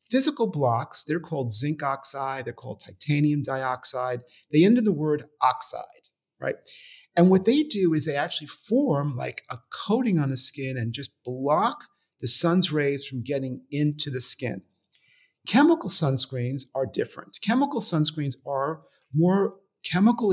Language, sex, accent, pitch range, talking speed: English, male, American, 135-180 Hz, 150 wpm